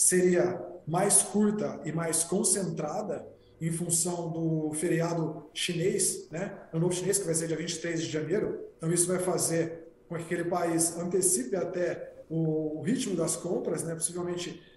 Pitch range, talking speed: 165-190 Hz, 150 wpm